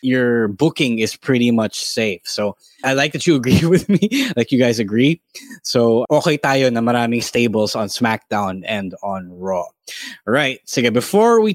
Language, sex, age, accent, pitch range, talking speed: English, male, 20-39, Filipino, 120-155 Hz, 170 wpm